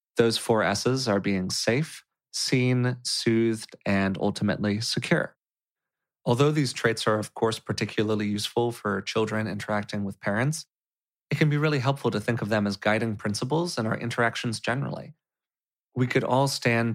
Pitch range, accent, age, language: 100-125 Hz, American, 30-49, English